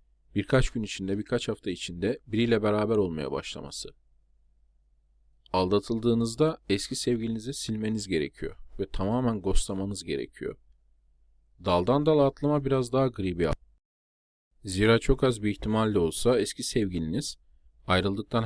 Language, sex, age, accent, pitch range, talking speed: Turkish, male, 40-59, native, 75-115 Hz, 115 wpm